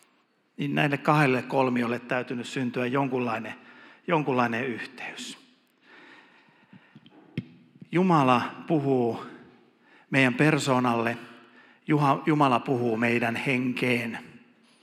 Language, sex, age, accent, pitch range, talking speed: Finnish, male, 50-69, native, 125-150 Hz, 70 wpm